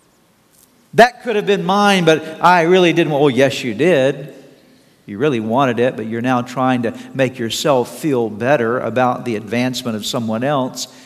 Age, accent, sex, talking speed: 50-69, American, male, 180 wpm